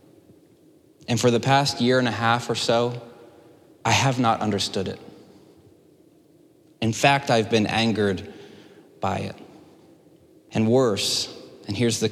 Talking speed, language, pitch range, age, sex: 135 wpm, English, 105-125 Hz, 20-39, male